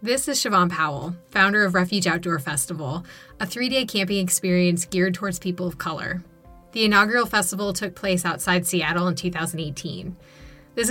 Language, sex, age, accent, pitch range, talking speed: English, female, 20-39, American, 170-205 Hz, 155 wpm